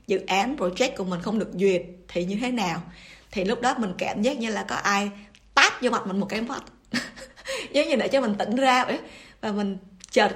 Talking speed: 230 wpm